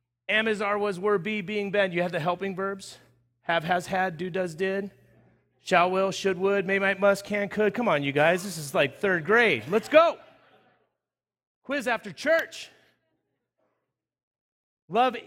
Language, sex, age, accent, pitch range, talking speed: English, male, 40-59, American, 175-220 Hz, 170 wpm